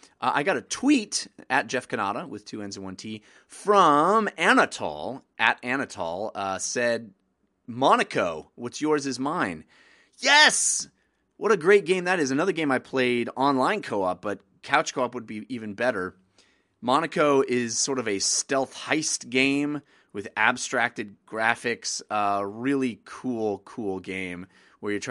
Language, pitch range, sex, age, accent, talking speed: English, 100-130 Hz, male, 30-49, American, 160 wpm